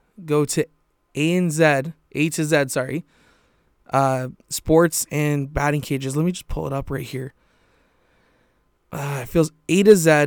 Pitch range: 145-170 Hz